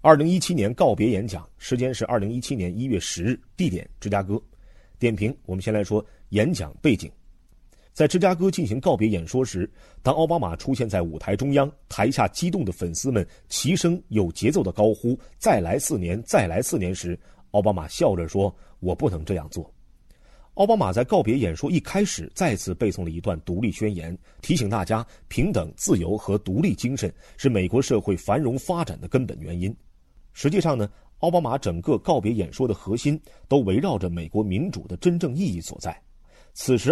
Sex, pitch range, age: male, 90-135 Hz, 30-49